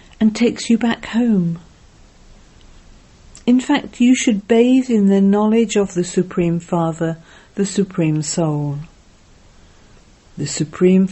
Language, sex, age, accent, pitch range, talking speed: English, female, 50-69, British, 155-225 Hz, 120 wpm